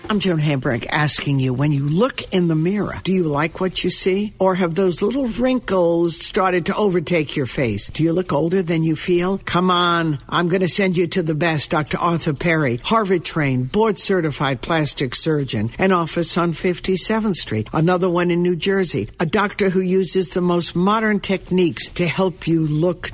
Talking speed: 190 wpm